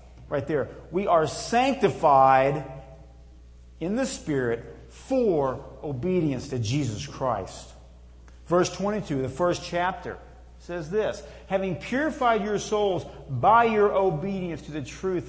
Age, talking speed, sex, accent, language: 50-69, 120 wpm, male, American, English